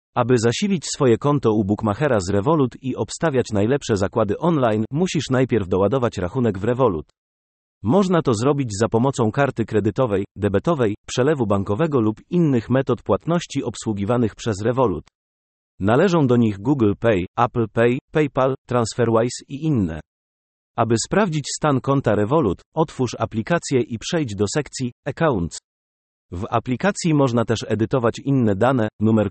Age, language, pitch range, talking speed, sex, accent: 40-59, Polish, 105-140 Hz, 135 wpm, male, native